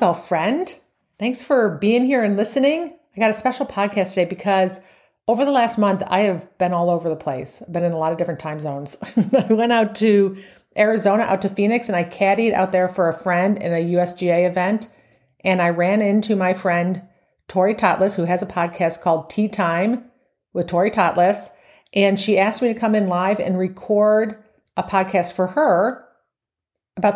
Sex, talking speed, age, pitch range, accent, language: female, 190 wpm, 40-59, 175-215 Hz, American, English